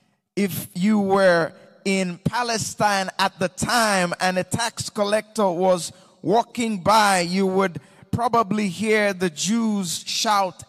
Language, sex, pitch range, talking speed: English, male, 185-230 Hz, 125 wpm